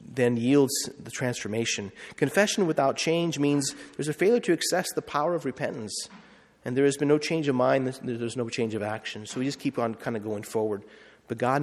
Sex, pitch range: male, 110-150 Hz